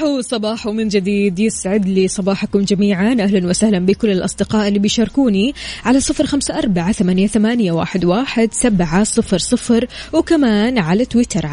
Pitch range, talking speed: 185-230 Hz, 105 wpm